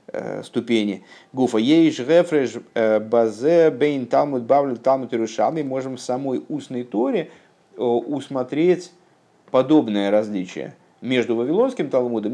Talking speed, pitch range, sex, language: 100 wpm, 115-135 Hz, male, Russian